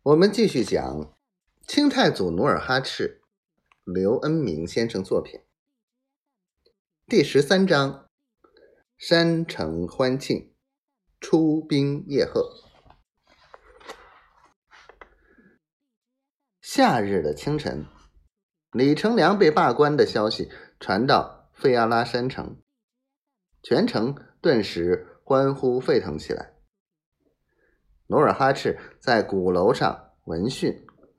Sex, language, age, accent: male, Chinese, 30-49, native